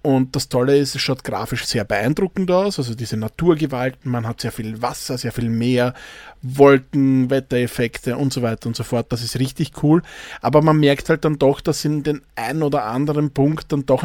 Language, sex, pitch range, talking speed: German, male, 125-145 Hz, 205 wpm